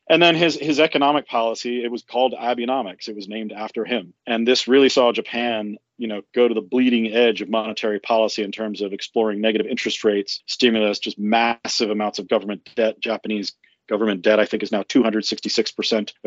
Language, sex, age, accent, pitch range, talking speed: English, male, 40-59, American, 105-120 Hz, 190 wpm